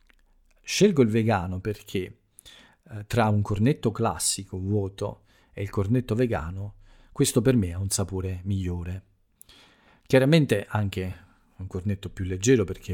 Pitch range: 90-105 Hz